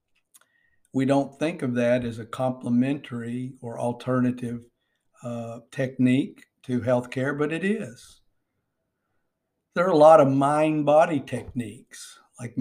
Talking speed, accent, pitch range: 125 wpm, American, 125-140 Hz